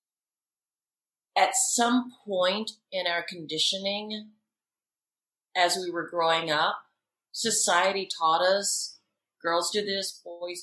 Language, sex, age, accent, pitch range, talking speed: English, female, 40-59, American, 150-185 Hz, 100 wpm